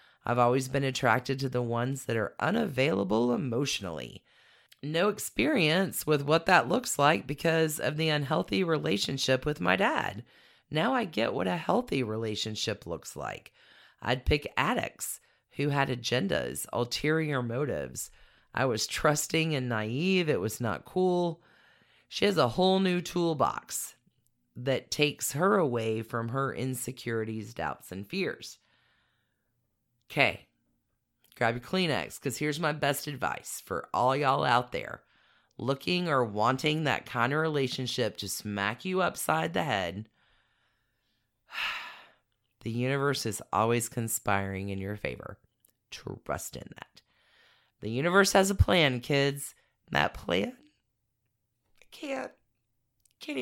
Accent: American